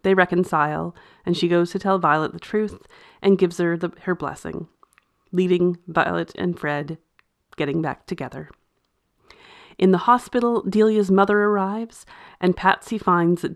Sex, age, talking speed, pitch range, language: female, 30-49, 145 wpm, 165-195 Hz, English